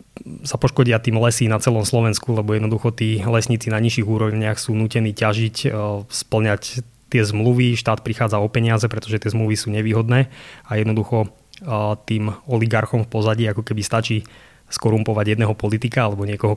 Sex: male